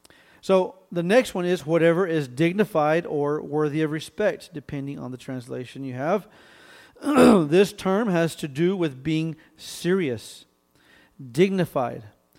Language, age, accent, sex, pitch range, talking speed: English, 40-59, American, male, 145-180 Hz, 130 wpm